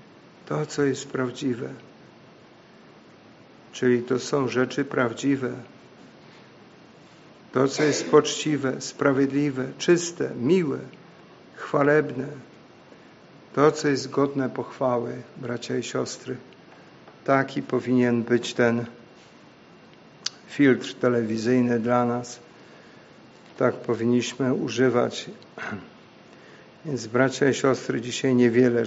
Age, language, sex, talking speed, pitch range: 50-69, Polish, male, 85 wpm, 120-140 Hz